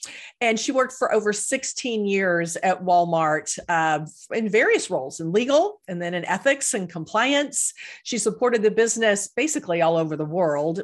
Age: 40-59